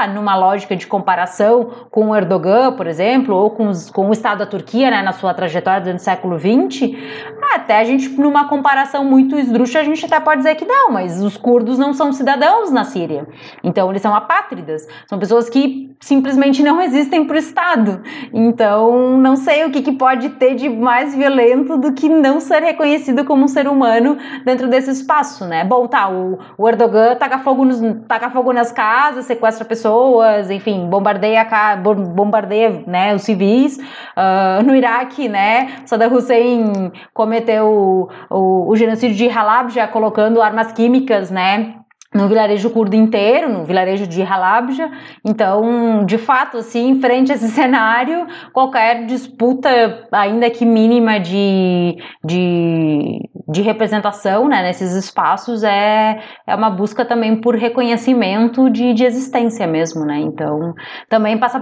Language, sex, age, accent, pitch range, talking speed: Portuguese, female, 20-39, Brazilian, 205-260 Hz, 160 wpm